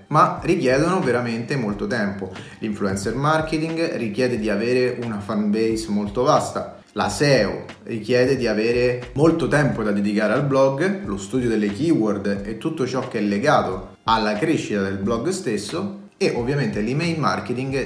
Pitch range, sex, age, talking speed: 105-140 Hz, male, 30-49, 150 wpm